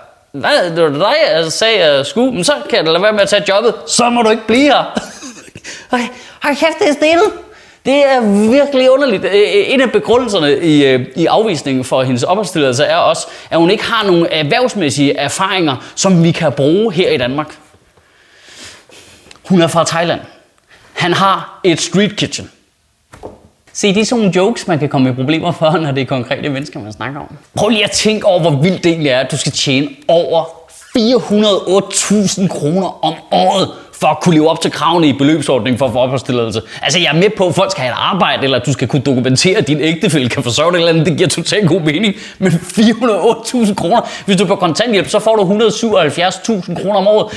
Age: 20-39